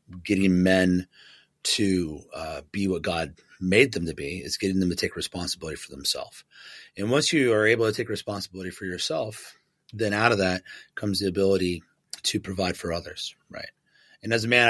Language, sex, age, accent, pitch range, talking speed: English, male, 30-49, American, 85-105 Hz, 185 wpm